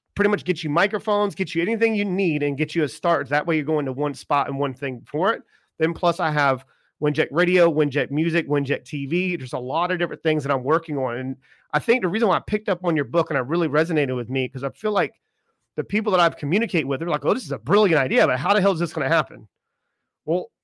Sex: male